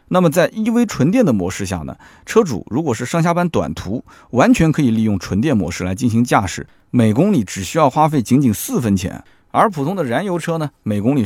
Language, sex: Chinese, male